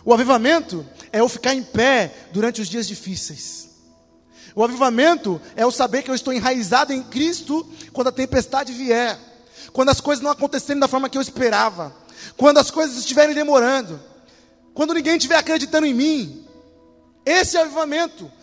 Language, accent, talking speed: Portuguese, Brazilian, 160 wpm